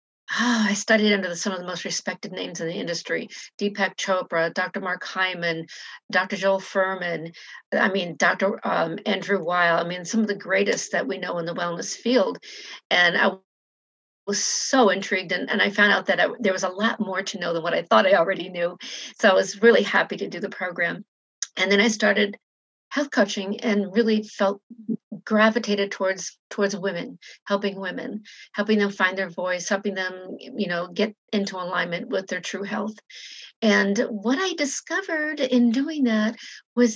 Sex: female